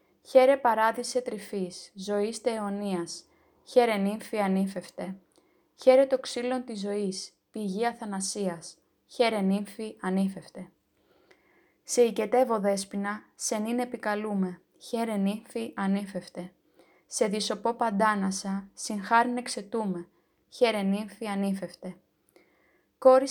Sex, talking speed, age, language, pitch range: female, 90 wpm, 20-39, Greek, 195-235 Hz